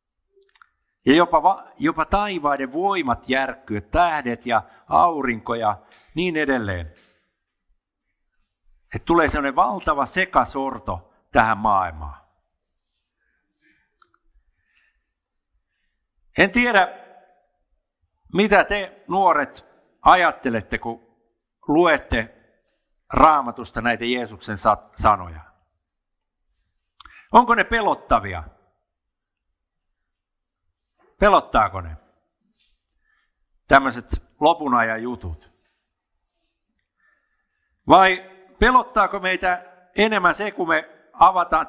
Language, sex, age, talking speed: Finnish, male, 50-69, 70 wpm